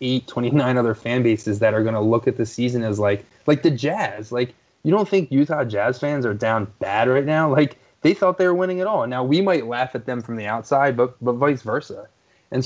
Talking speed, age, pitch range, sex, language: 245 wpm, 20-39, 110-135 Hz, male, English